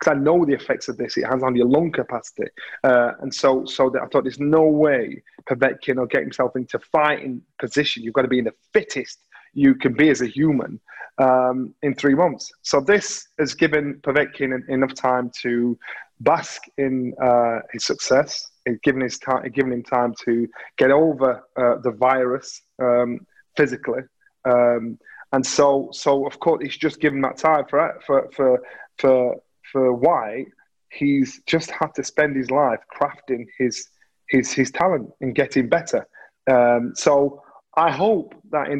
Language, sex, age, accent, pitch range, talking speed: English, male, 30-49, British, 125-150 Hz, 180 wpm